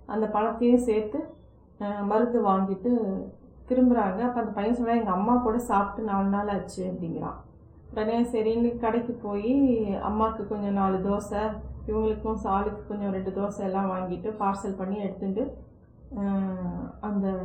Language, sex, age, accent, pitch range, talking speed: Tamil, female, 30-49, native, 195-230 Hz, 125 wpm